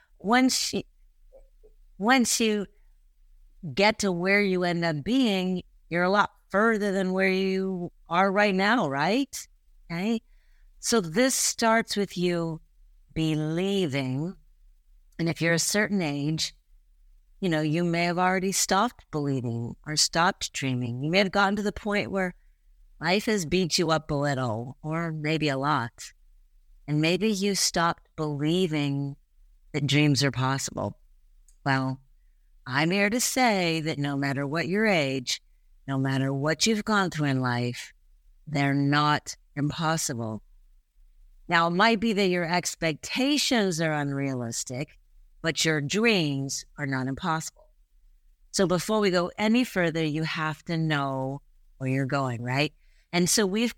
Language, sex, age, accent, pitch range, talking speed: English, female, 50-69, American, 140-195 Hz, 145 wpm